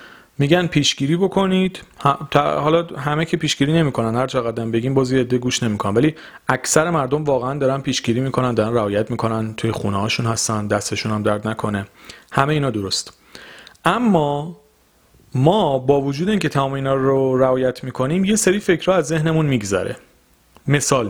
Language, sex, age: Persian, male, 40-59